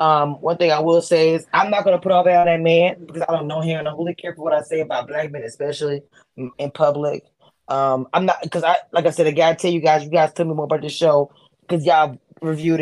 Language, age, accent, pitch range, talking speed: English, 20-39, American, 150-175 Hz, 275 wpm